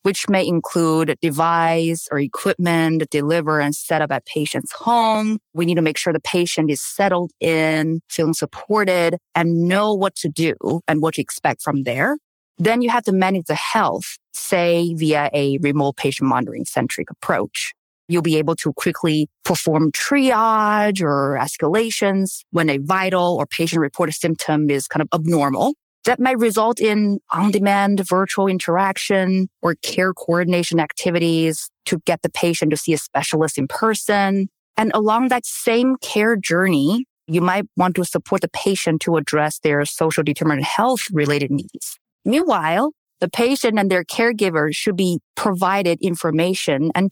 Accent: American